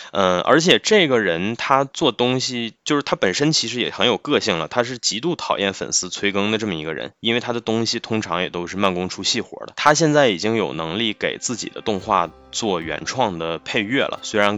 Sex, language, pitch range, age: male, Chinese, 90-115 Hz, 20-39